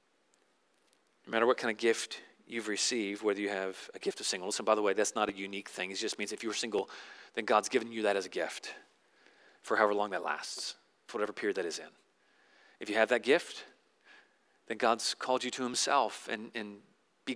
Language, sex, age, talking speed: English, male, 30-49, 220 wpm